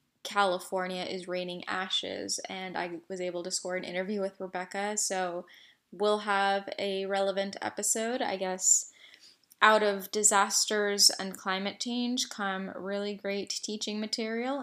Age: 10-29